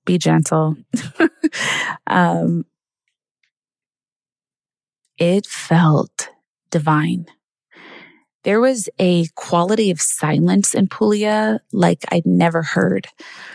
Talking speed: 80 wpm